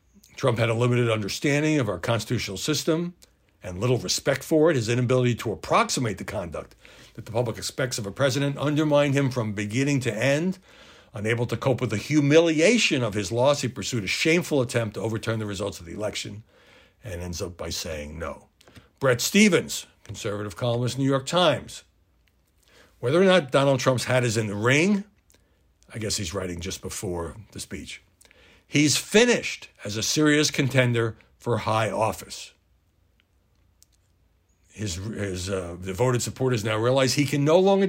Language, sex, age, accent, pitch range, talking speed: English, male, 60-79, American, 100-140 Hz, 165 wpm